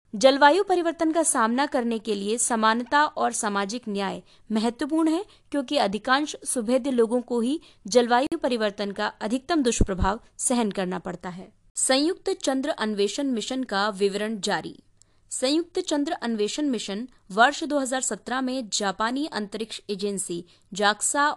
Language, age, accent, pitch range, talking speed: Hindi, 20-39, native, 210-280 Hz, 130 wpm